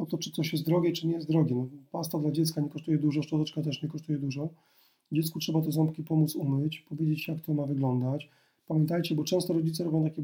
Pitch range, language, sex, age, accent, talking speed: 145-160 Hz, Polish, male, 30-49, native, 235 wpm